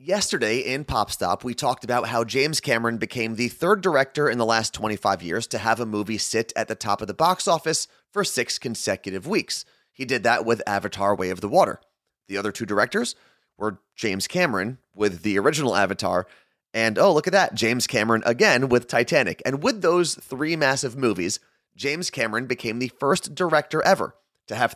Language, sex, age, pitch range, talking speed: English, male, 30-49, 105-145 Hz, 195 wpm